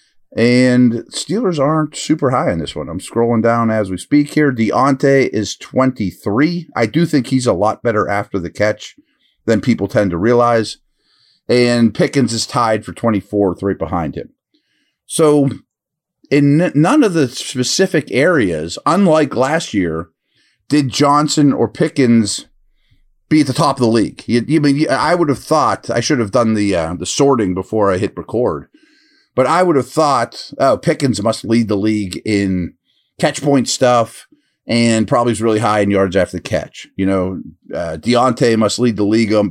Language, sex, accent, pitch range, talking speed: English, male, American, 105-150 Hz, 170 wpm